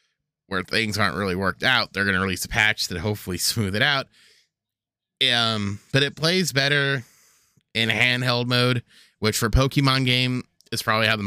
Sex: male